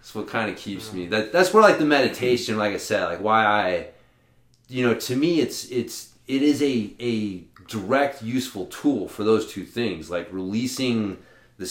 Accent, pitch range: American, 90-115 Hz